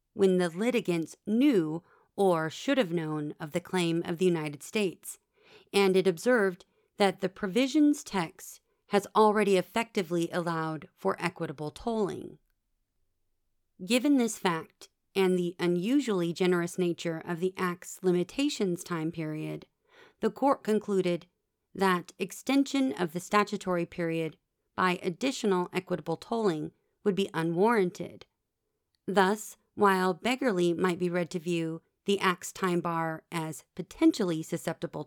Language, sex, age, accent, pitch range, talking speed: English, female, 40-59, American, 170-205 Hz, 125 wpm